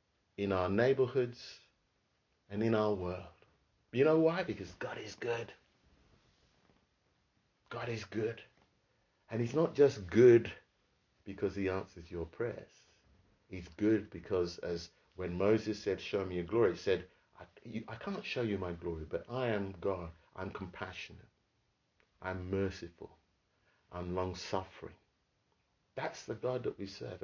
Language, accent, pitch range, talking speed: English, British, 100-165 Hz, 140 wpm